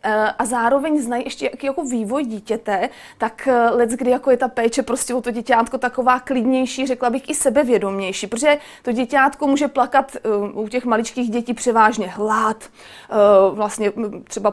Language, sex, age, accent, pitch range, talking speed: Czech, female, 30-49, native, 225-260 Hz, 155 wpm